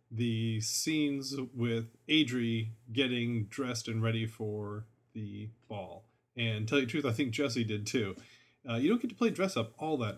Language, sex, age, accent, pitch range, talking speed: English, male, 30-49, American, 110-135 Hz, 175 wpm